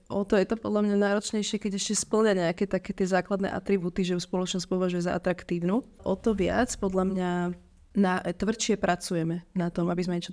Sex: female